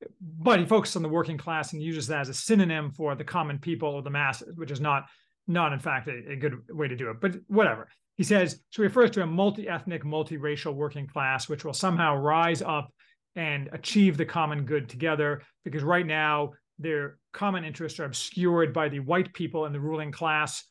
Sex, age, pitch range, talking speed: male, 40-59, 145-180 Hz, 210 wpm